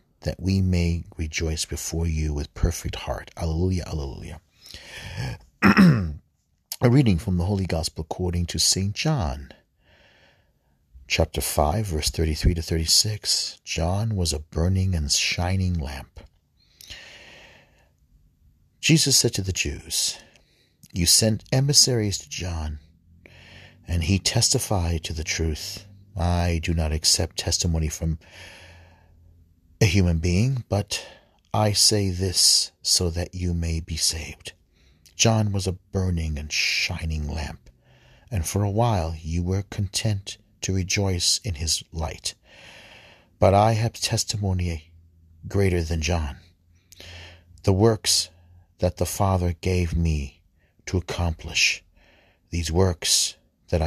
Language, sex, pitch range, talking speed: English, male, 80-95 Hz, 120 wpm